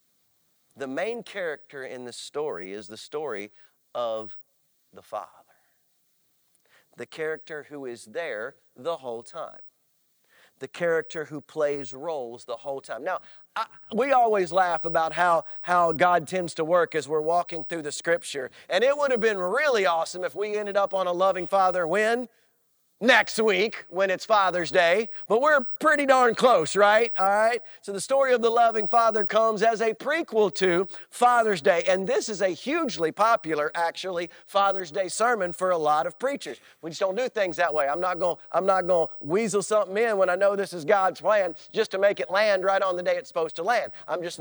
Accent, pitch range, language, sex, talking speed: American, 170-225 Hz, English, male, 190 wpm